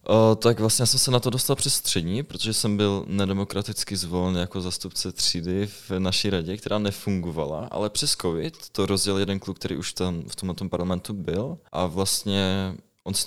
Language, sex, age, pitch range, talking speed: Czech, male, 20-39, 85-100 Hz, 190 wpm